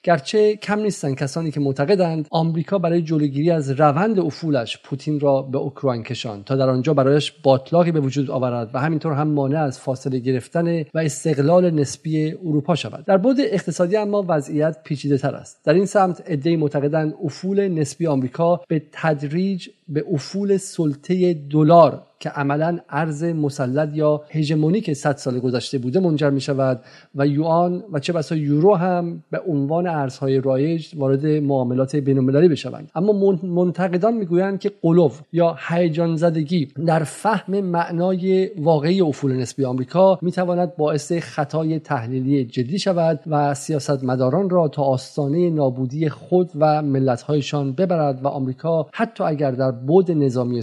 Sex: male